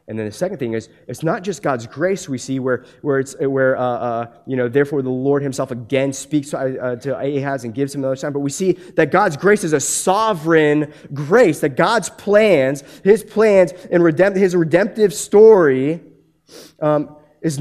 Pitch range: 125-170 Hz